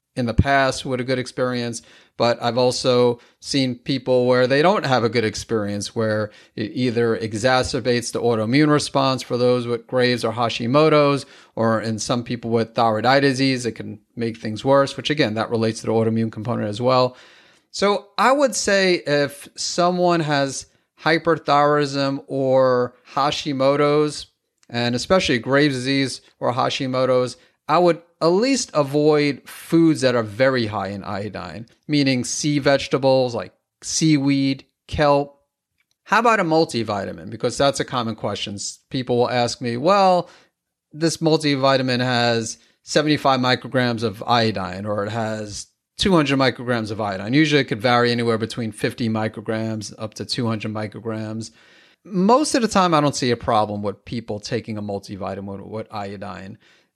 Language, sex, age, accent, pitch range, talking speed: English, male, 30-49, American, 115-140 Hz, 155 wpm